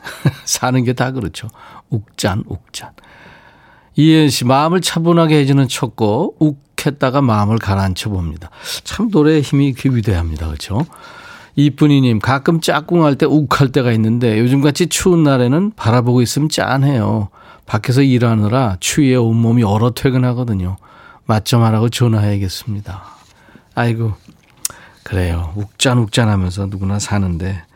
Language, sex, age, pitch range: Korean, male, 40-59, 105-145 Hz